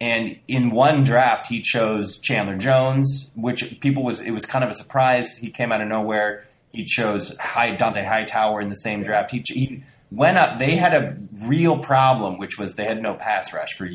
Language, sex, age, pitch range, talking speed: English, male, 20-39, 105-130 Hz, 205 wpm